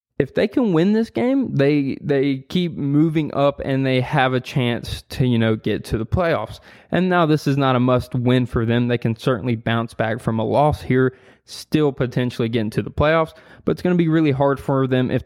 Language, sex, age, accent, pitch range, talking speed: English, male, 20-39, American, 120-150 Hz, 230 wpm